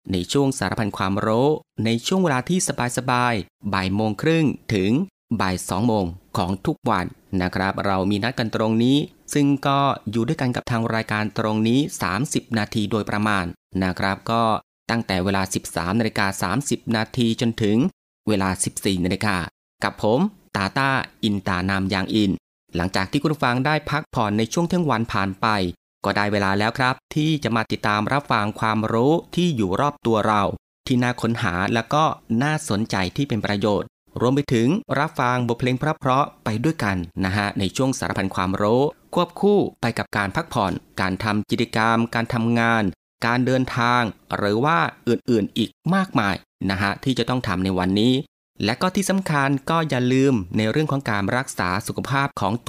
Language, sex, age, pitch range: Thai, male, 30-49, 100-130 Hz